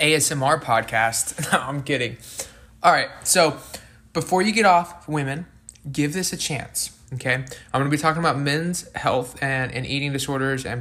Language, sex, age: English, male, 20-39